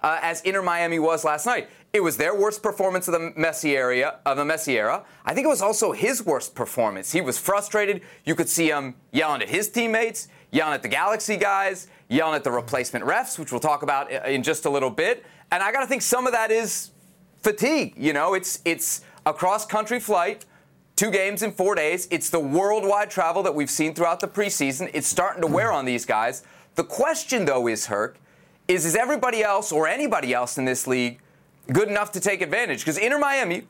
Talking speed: 205 wpm